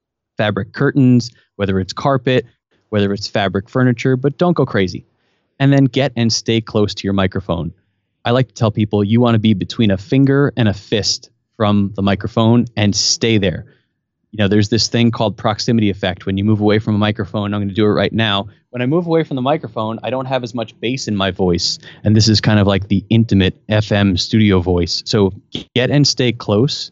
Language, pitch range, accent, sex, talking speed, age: English, 100-120 Hz, American, male, 215 wpm, 20-39